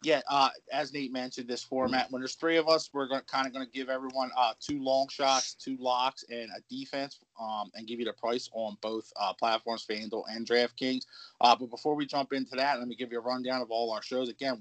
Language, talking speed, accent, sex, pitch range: English, 240 wpm, American, male, 120-140 Hz